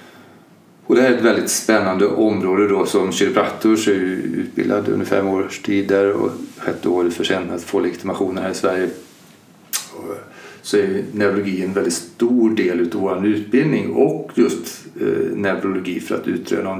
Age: 40-59